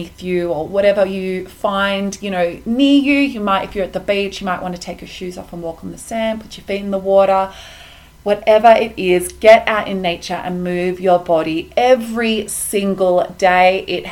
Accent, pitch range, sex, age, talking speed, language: Australian, 180-215 Hz, female, 20-39, 215 wpm, English